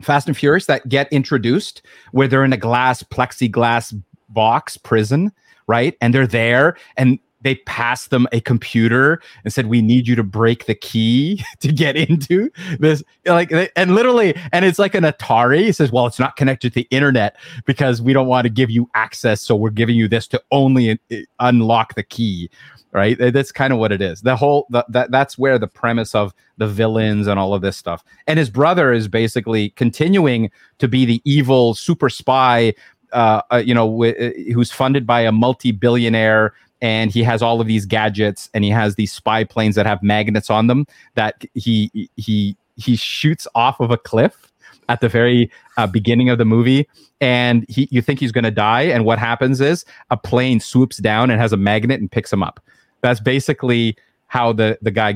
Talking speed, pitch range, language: 200 wpm, 110-135 Hz, English